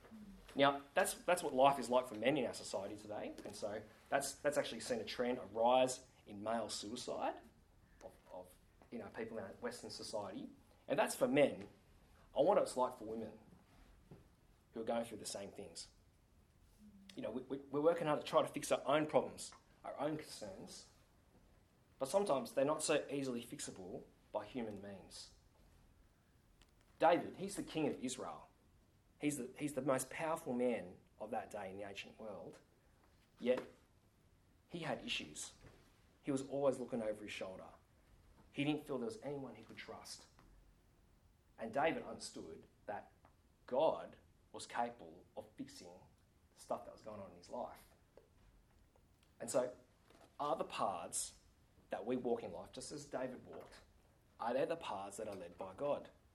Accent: Australian